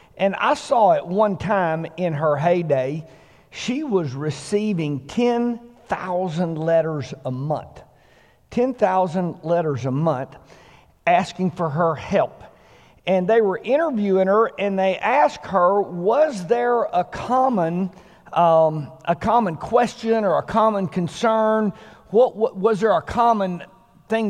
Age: 50-69